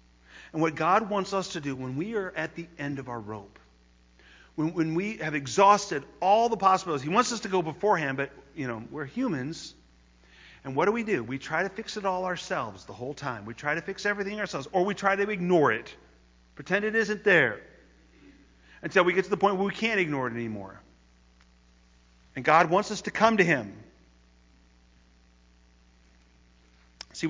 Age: 40-59